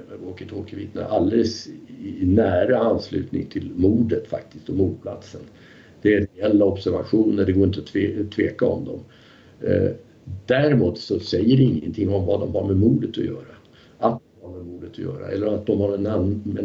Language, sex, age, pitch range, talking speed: Swedish, male, 50-69, 90-115 Hz, 175 wpm